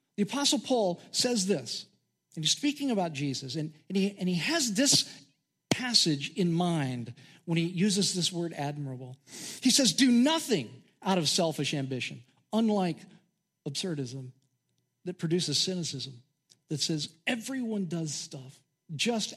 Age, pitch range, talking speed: 50-69, 145-215 Hz, 140 wpm